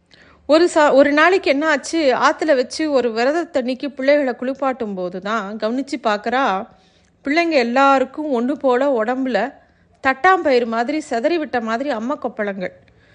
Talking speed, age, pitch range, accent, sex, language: 130 wpm, 30-49, 240-295 Hz, native, female, Tamil